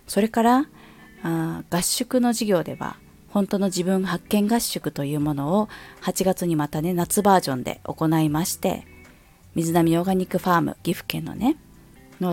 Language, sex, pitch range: Japanese, female, 155-200 Hz